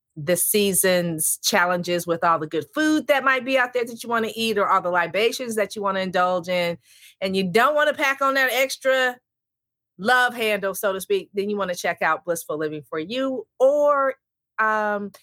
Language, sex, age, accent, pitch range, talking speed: English, female, 30-49, American, 165-230 Hz, 215 wpm